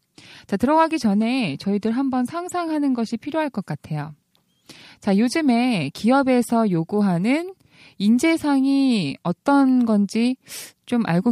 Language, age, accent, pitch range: Korean, 20-39, native, 180-255 Hz